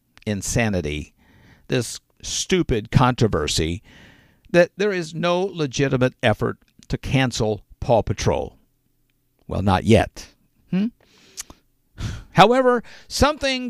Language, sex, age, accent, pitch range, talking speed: English, male, 50-69, American, 120-170 Hz, 90 wpm